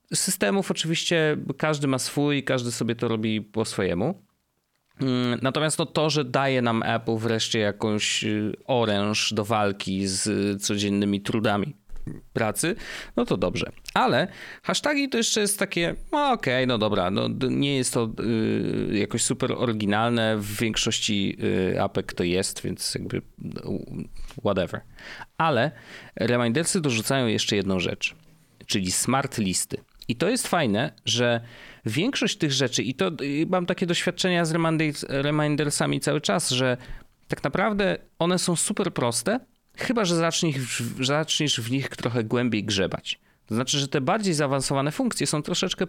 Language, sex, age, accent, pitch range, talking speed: Polish, male, 30-49, native, 115-165 Hz, 135 wpm